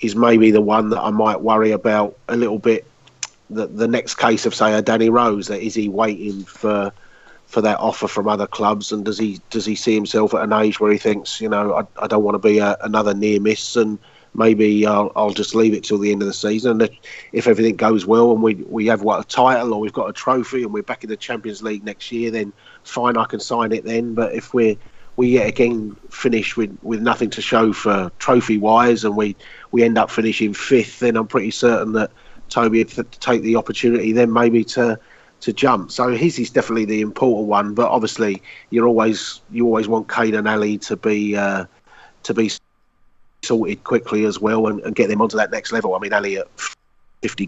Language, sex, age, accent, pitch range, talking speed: English, male, 30-49, British, 105-115 Hz, 230 wpm